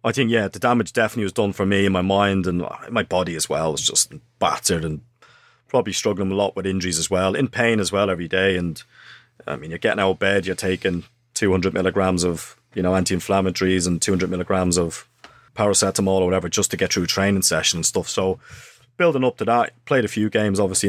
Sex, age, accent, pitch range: male, 30-49, British, 95-110 Hz